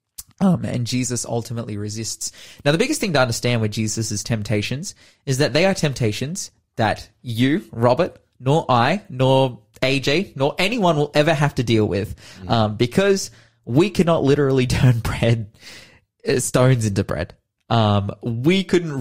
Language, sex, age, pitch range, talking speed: English, male, 20-39, 110-145 Hz, 150 wpm